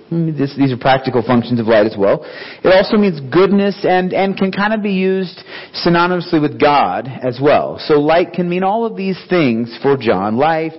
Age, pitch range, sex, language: 40-59, 140-190 Hz, male, English